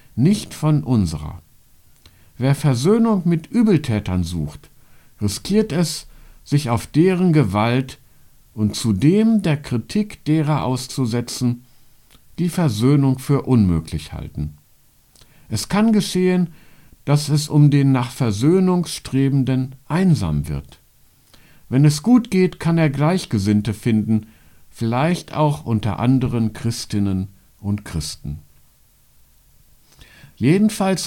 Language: German